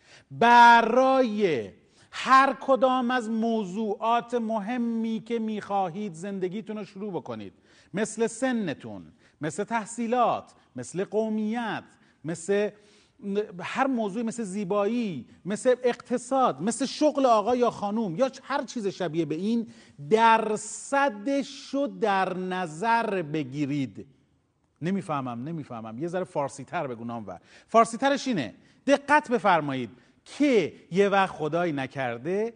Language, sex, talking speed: Persian, male, 105 wpm